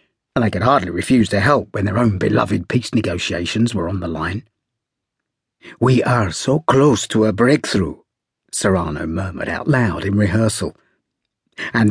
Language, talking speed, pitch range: English, 155 wpm, 100-120 Hz